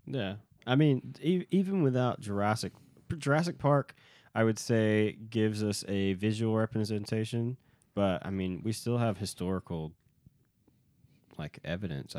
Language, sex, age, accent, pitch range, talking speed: English, male, 20-39, American, 90-115 Hz, 125 wpm